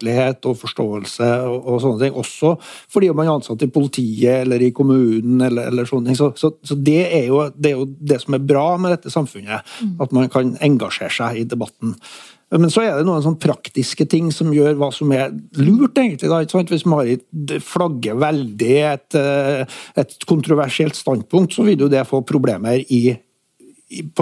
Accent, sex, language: Swedish, male, English